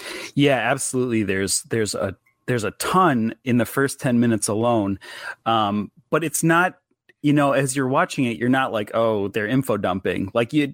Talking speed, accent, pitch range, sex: 185 wpm, American, 105-135 Hz, male